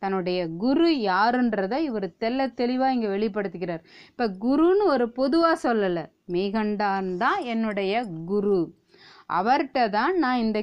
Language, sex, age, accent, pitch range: Tamil, female, 30-49, native, 195-260 Hz